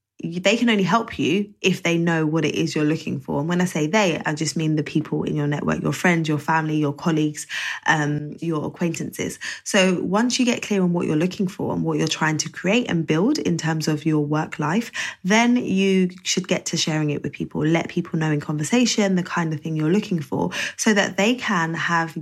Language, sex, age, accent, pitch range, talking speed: English, female, 20-39, British, 155-185 Hz, 230 wpm